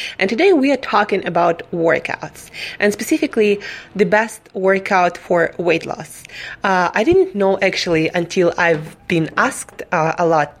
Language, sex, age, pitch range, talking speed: English, female, 20-39, 170-210 Hz, 155 wpm